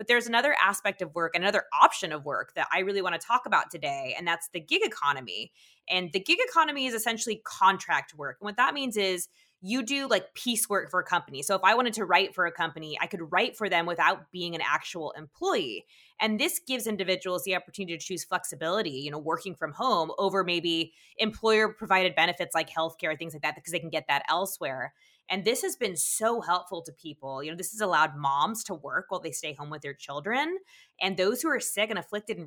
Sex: female